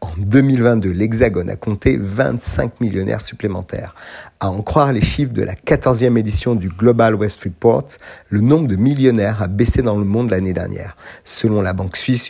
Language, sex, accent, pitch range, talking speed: French, male, French, 100-120 Hz, 175 wpm